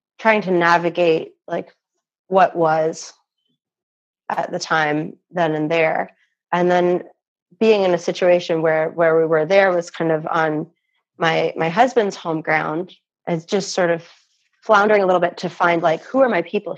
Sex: female